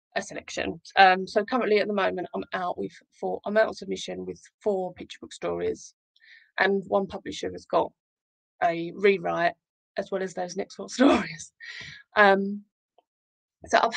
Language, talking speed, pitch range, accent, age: English, 160 wpm, 190-255 Hz, British, 20-39